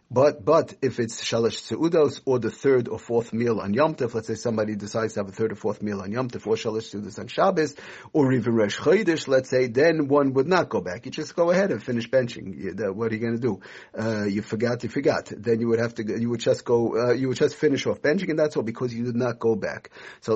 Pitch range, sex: 110-135 Hz, male